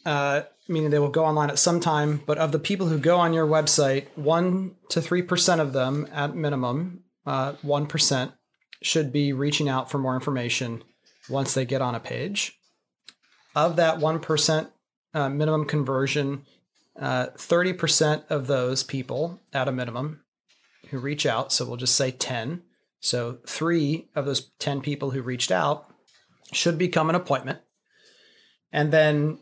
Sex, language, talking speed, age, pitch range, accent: male, English, 155 wpm, 30-49, 130-160 Hz, American